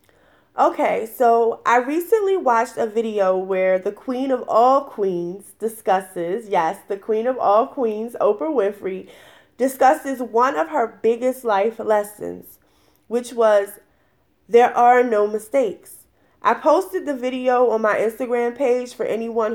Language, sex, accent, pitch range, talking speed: English, female, American, 210-255 Hz, 140 wpm